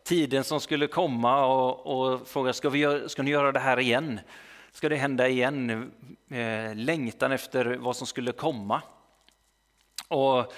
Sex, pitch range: male, 115-135 Hz